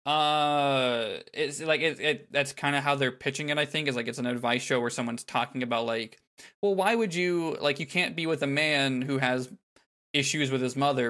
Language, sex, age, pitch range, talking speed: English, male, 20-39, 120-150 Hz, 225 wpm